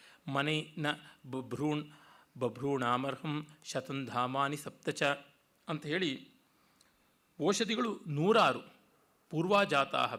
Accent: native